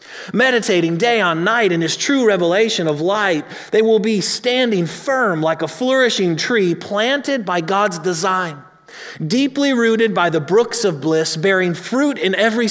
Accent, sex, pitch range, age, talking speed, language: American, male, 165-215 Hz, 30-49, 160 wpm, English